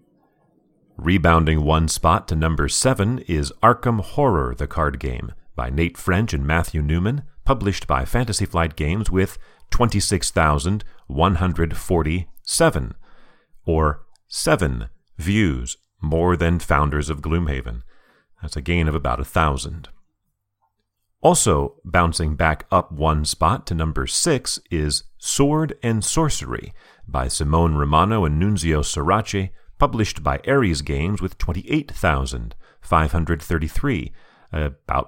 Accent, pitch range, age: American, 75-105 Hz, 40-59